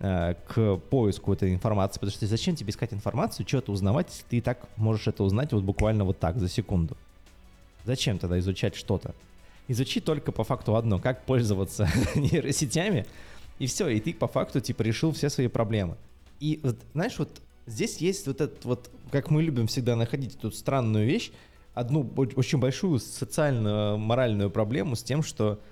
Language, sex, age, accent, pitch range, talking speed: Russian, male, 20-39, native, 105-135 Hz, 175 wpm